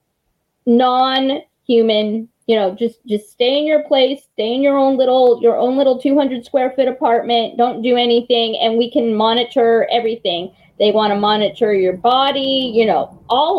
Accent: American